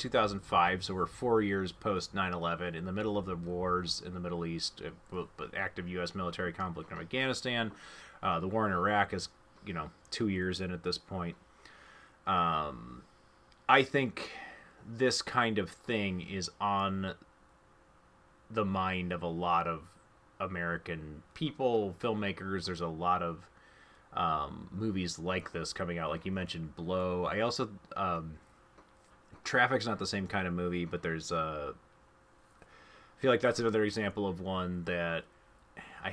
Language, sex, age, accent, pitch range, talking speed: English, male, 30-49, American, 85-105 Hz, 155 wpm